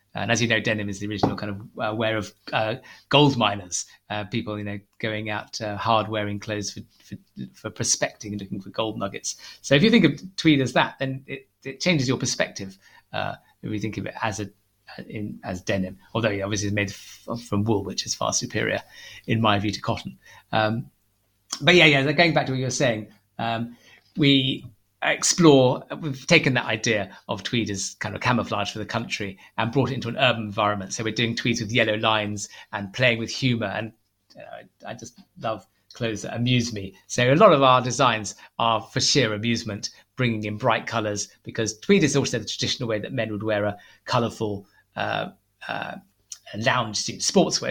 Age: 30-49